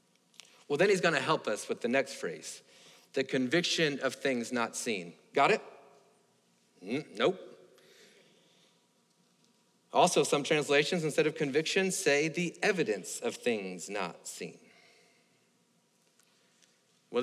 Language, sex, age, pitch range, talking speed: English, male, 40-59, 135-175 Hz, 120 wpm